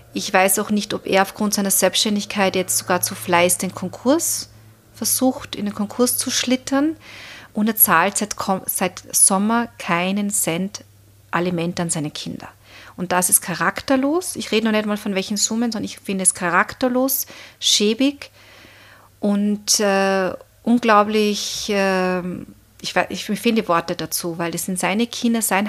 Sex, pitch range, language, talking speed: female, 180-225 Hz, German, 155 wpm